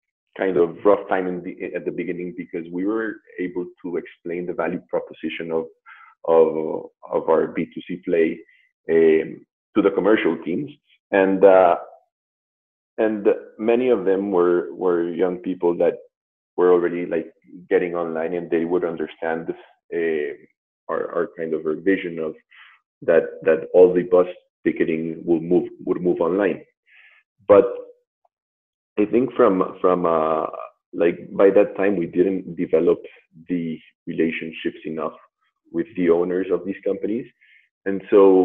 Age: 30-49